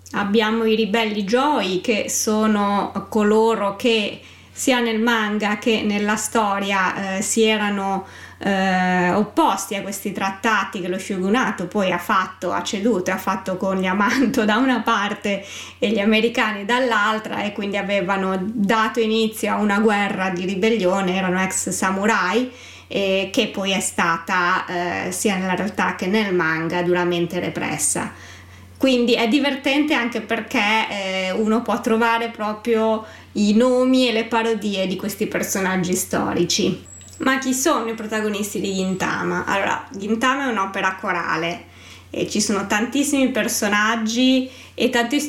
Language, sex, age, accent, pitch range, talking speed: Italian, female, 20-39, native, 190-235 Hz, 145 wpm